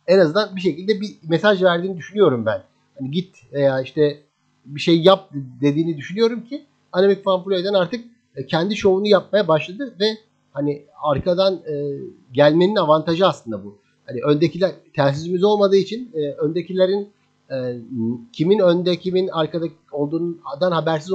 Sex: male